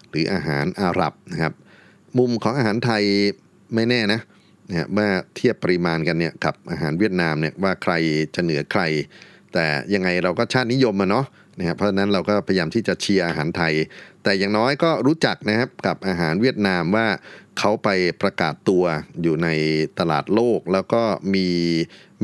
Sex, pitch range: male, 85-110 Hz